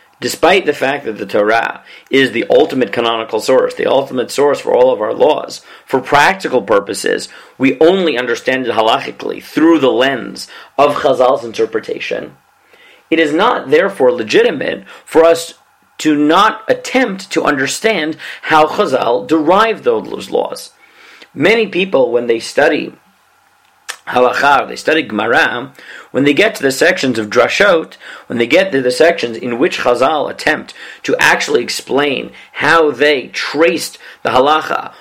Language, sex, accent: English, male, American